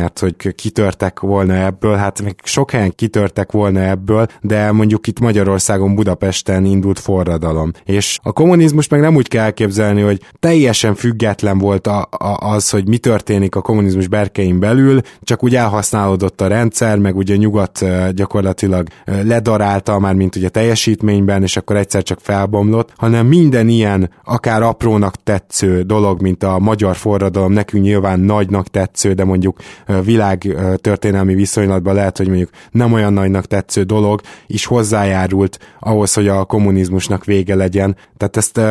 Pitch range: 95-110 Hz